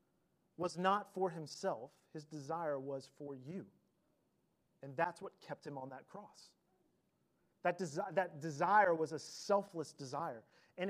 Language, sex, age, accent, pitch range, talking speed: English, male, 30-49, American, 155-205 Hz, 145 wpm